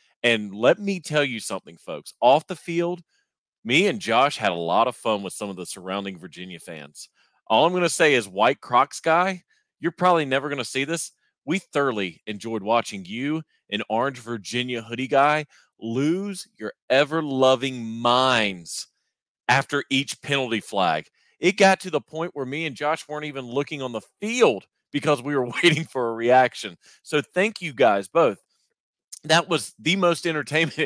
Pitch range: 110-160 Hz